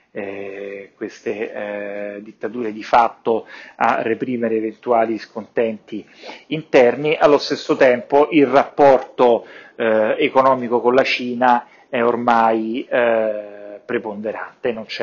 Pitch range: 110-125 Hz